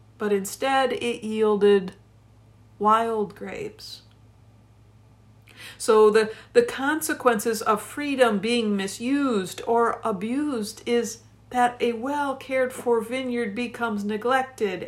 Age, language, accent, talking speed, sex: 60-79, English, American, 95 wpm, female